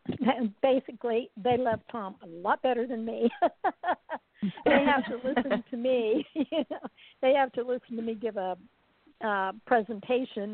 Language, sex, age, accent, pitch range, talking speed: English, female, 60-79, American, 200-240 Hz, 160 wpm